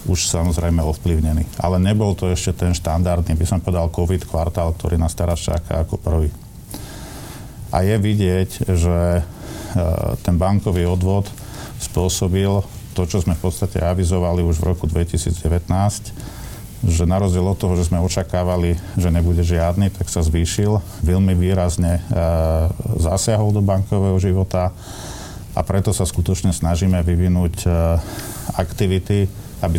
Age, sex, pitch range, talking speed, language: 50-69, male, 85-100 Hz, 130 wpm, Slovak